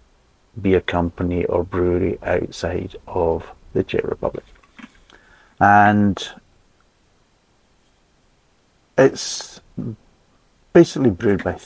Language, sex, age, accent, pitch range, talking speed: English, male, 50-69, British, 85-95 Hz, 75 wpm